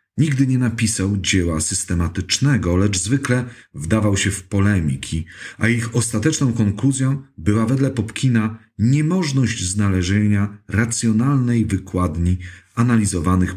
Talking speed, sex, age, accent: 100 wpm, male, 40-59, native